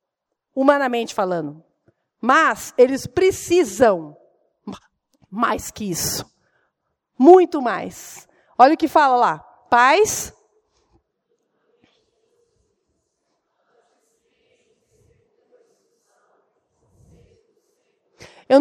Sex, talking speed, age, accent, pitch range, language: female, 55 wpm, 40-59, Brazilian, 240-345 Hz, Portuguese